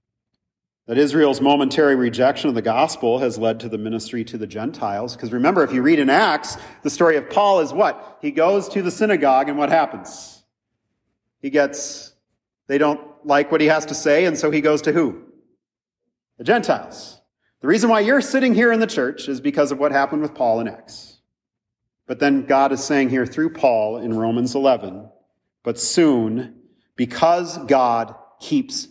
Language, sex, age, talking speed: English, male, 40-59, 185 wpm